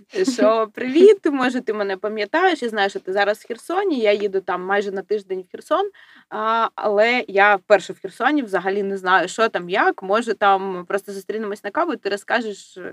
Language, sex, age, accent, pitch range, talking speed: Ukrainian, female, 20-39, native, 195-260 Hz, 190 wpm